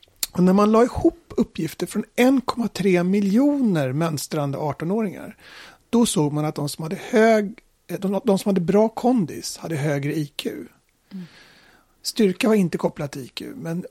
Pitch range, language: 160-210 Hz, English